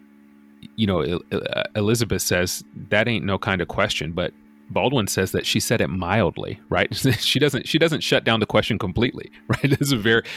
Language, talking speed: English, 190 wpm